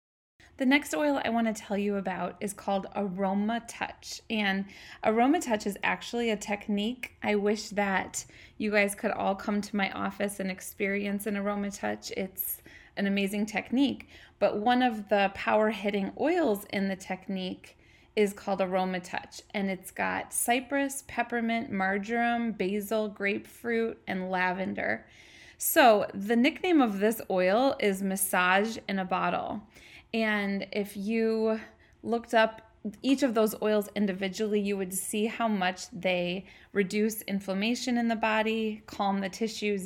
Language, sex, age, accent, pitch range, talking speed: English, female, 20-39, American, 195-230 Hz, 150 wpm